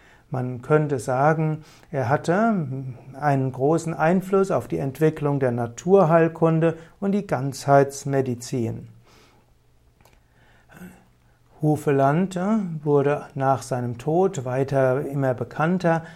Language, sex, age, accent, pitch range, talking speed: German, male, 60-79, German, 130-165 Hz, 90 wpm